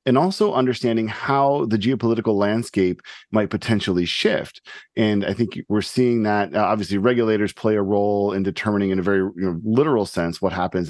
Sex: male